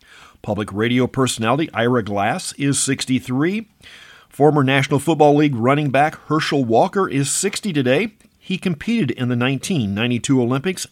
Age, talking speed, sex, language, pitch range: 50-69, 130 wpm, male, English, 115-150 Hz